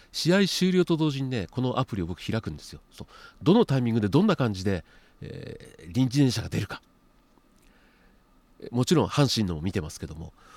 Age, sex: 40-59, male